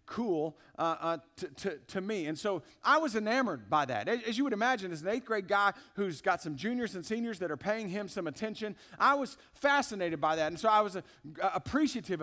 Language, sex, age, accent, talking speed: English, male, 50-69, American, 230 wpm